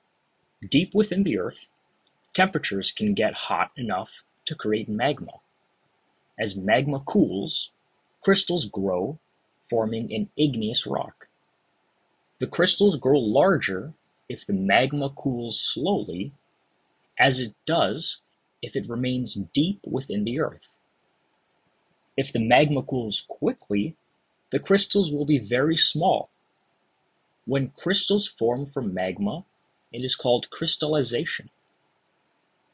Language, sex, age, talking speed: English, male, 30-49, 110 wpm